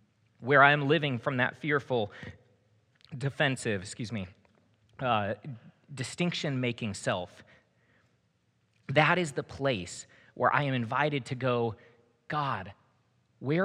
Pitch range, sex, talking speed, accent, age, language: 115-155 Hz, male, 110 wpm, American, 30-49, English